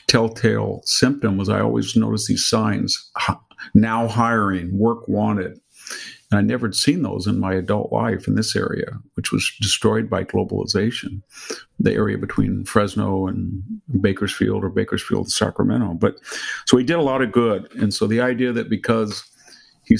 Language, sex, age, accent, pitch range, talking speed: English, male, 50-69, American, 100-120 Hz, 160 wpm